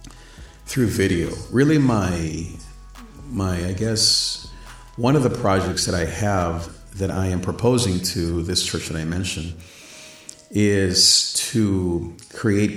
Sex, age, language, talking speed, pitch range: male, 40-59, English, 125 wpm, 85-105 Hz